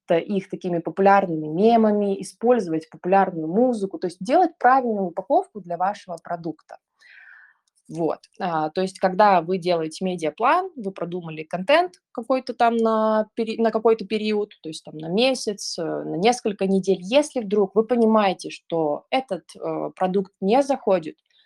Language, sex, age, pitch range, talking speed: Russian, female, 20-39, 175-215 Hz, 130 wpm